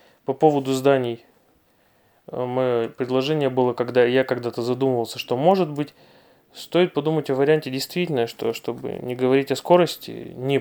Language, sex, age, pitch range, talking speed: Russian, male, 20-39, 120-155 Hz, 140 wpm